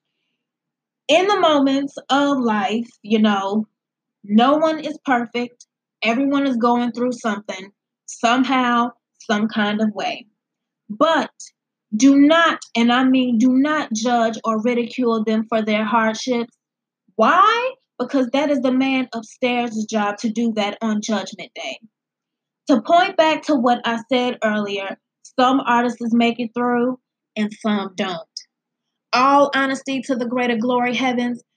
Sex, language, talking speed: female, English, 140 wpm